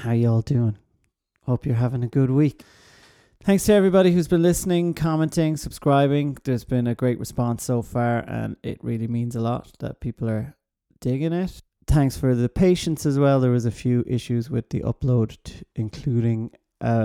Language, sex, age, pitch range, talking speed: English, male, 30-49, 115-140 Hz, 185 wpm